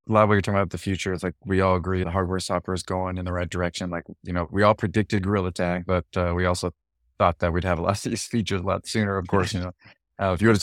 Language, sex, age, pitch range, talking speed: English, male, 30-49, 85-100 Hz, 315 wpm